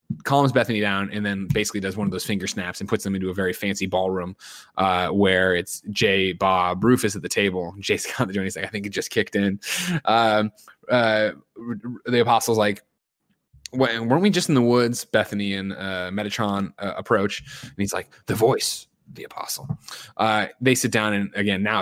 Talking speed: 205 wpm